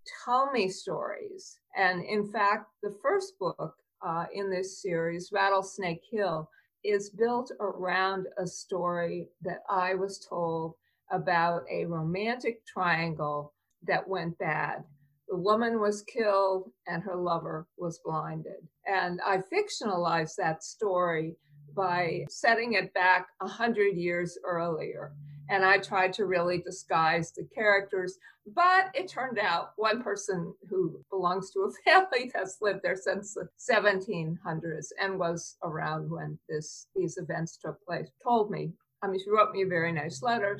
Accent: American